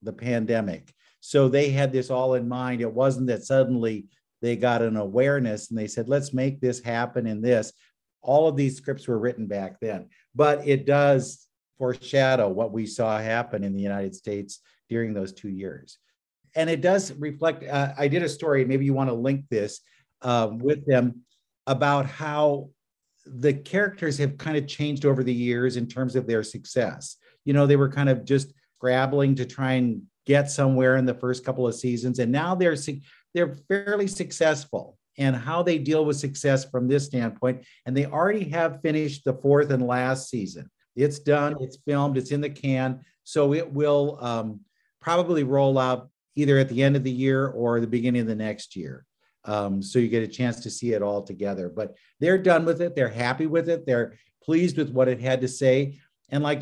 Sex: male